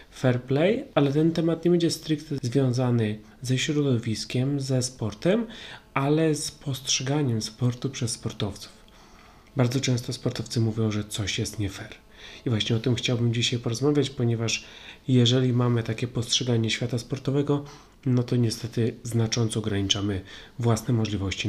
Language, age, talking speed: Polish, 30-49, 135 wpm